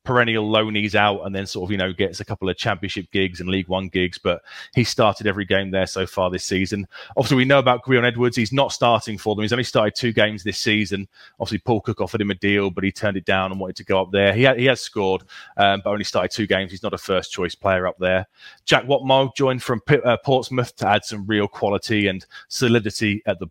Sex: male